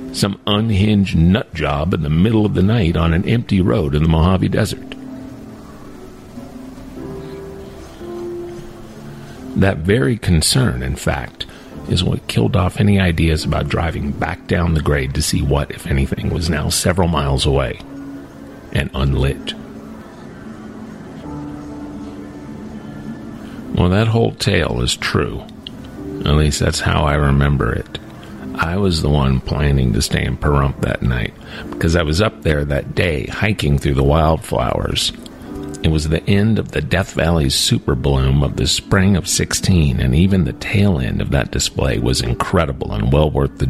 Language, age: English, 50-69